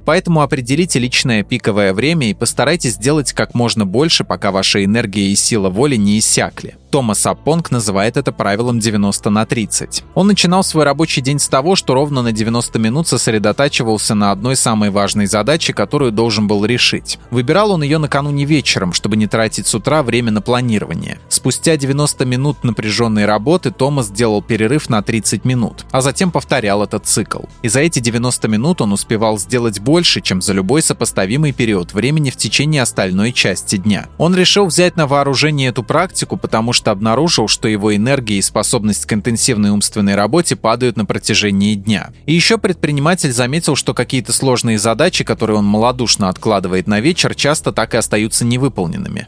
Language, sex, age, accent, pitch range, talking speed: Russian, male, 20-39, native, 110-145 Hz, 170 wpm